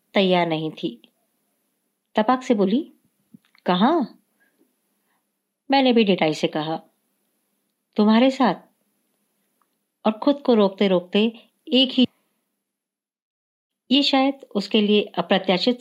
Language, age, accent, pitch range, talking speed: Hindi, 50-69, native, 190-245 Hz, 100 wpm